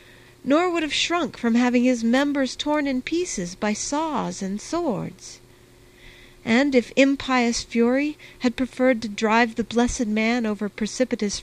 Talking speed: 145 wpm